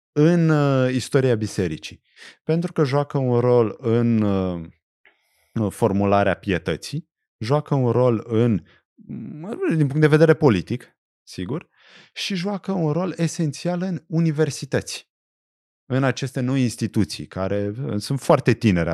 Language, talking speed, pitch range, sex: Romanian, 115 wpm, 95-145 Hz, male